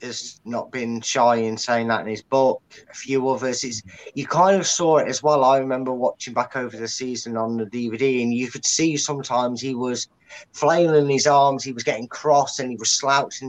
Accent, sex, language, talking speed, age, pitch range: British, male, English, 220 wpm, 20-39, 120-145 Hz